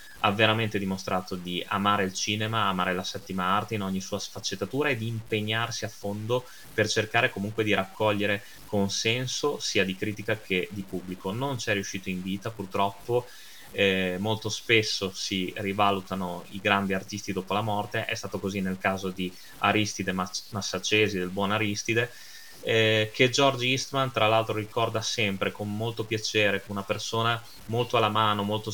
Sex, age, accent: male, 20-39, native